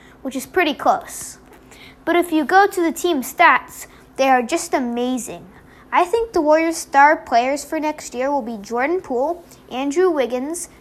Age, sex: 20-39, female